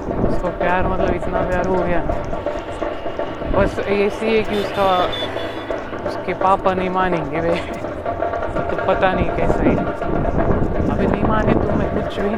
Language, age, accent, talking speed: Marathi, 30-49, native, 80 wpm